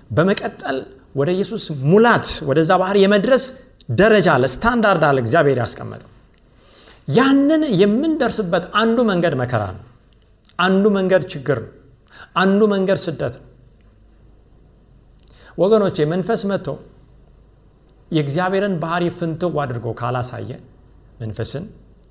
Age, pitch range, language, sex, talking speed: 50-69, 120-200 Hz, Amharic, male, 90 wpm